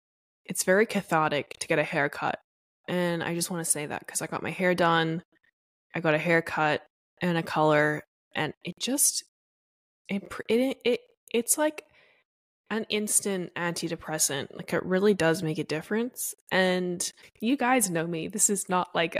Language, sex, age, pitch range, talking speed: English, female, 20-39, 165-210 Hz, 170 wpm